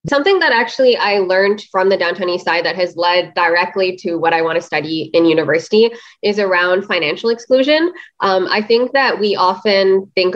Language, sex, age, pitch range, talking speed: English, female, 20-39, 170-225 Hz, 190 wpm